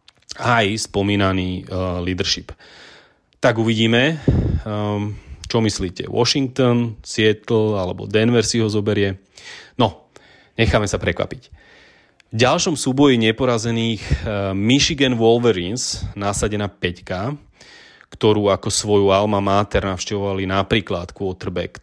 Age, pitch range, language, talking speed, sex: 30-49, 95-115 Hz, Slovak, 100 wpm, male